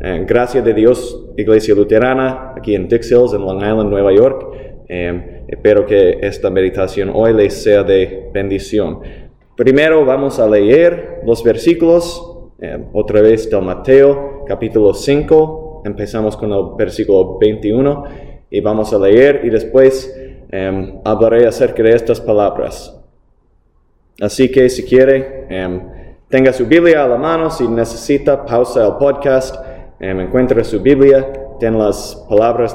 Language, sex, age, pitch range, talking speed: English, male, 20-39, 105-140 Hz, 135 wpm